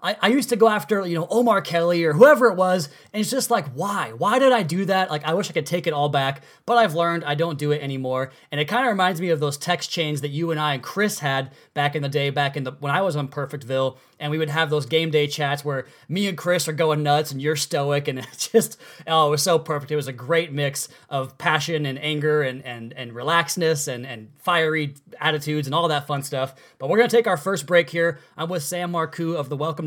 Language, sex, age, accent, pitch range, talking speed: English, male, 20-39, American, 145-180 Hz, 265 wpm